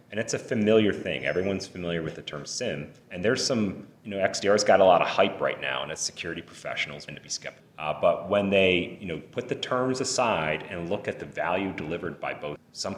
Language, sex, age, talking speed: English, male, 30-49, 235 wpm